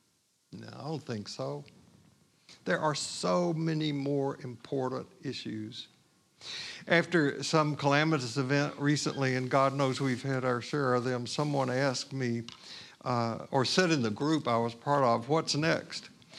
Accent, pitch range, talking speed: American, 130-160 Hz, 150 wpm